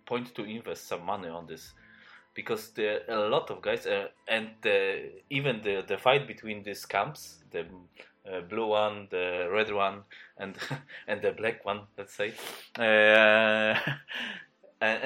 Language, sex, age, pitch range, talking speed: English, male, 20-39, 105-145 Hz, 160 wpm